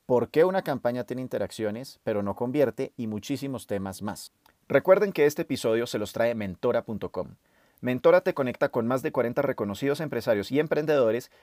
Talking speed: 170 wpm